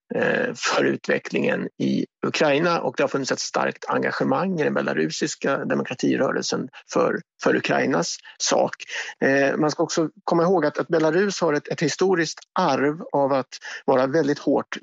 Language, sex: Swedish, male